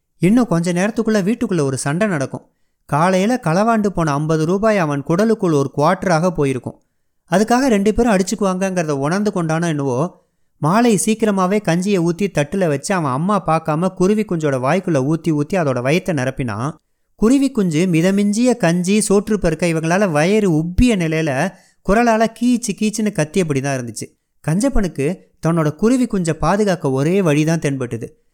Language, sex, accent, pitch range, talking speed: Tamil, male, native, 145-200 Hz, 140 wpm